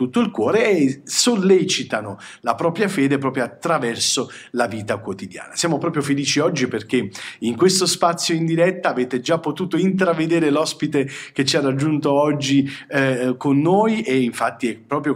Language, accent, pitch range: Italian, native, 115-155 Hz